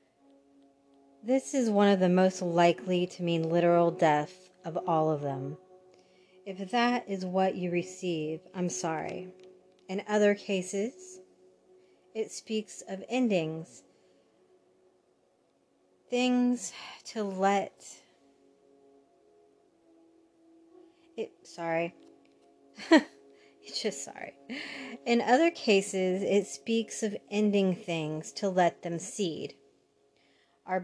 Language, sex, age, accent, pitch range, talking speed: English, female, 30-49, American, 170-210 Hz, 95 wpm